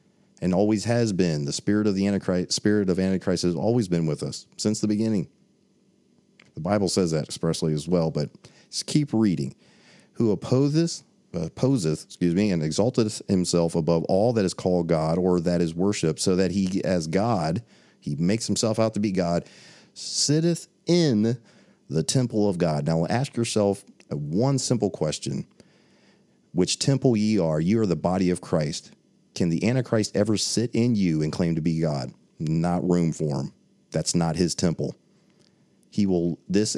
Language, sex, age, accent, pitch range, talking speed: English, male, 40-59, American, 85-115 Hz, 170 wpm